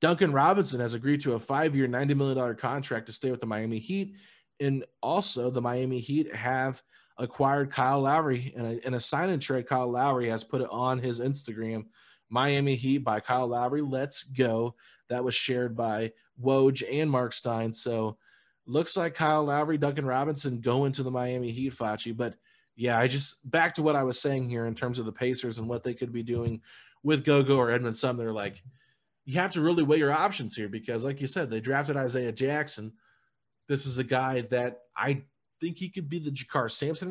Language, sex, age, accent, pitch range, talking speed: English, male, 20-39, American, 115-140 Hz, 200 wpm